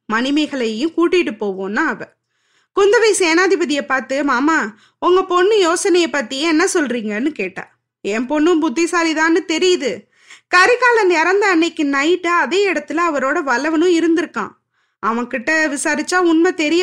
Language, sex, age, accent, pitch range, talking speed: Tamil, female, 20-39, native, 255-350 Hz, 115 wpm